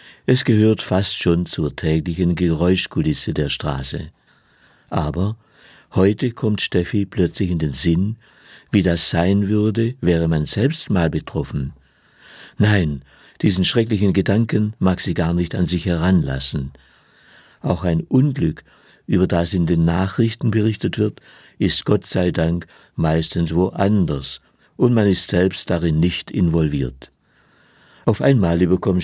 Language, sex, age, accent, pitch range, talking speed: German, male, 60-79, German, 85-105 Hz, 130 wpm